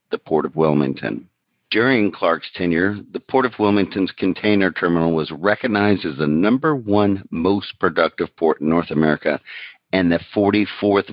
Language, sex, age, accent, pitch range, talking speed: English, male, 50-69, American, 85-100 Hz, 150 wpm